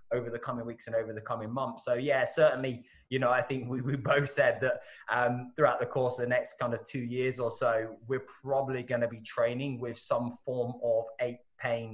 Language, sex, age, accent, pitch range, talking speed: English, male, 20-39, British, 115-130 Hz, 230 wpm